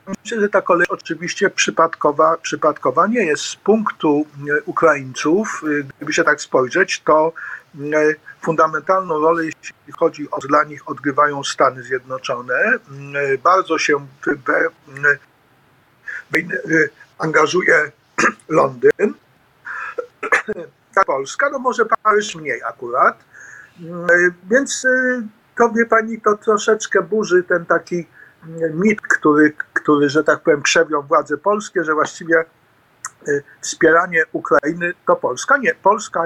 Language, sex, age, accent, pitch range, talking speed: Polish, male, 50-69, native, 155-215 Hz, 110 wpm